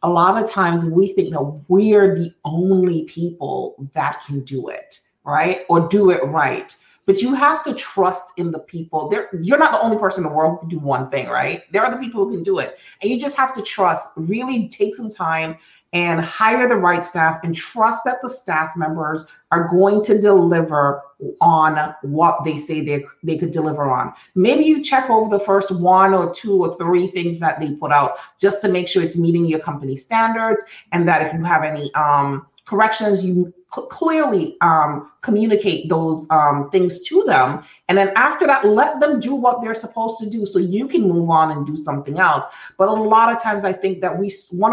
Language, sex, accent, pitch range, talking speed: English, female, American, 160-215 Hz, 210 wpm